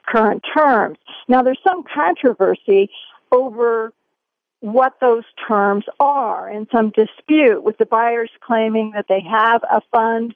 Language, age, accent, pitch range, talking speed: English, 50-69, American, 225-290 Hz, 135 wpm